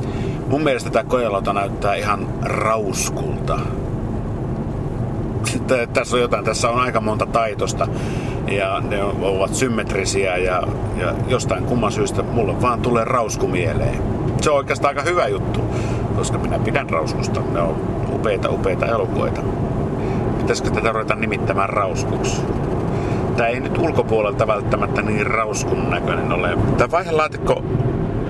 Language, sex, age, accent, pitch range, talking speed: Finnish, male, 50-69, native, 110-130 Hz, 130 wpm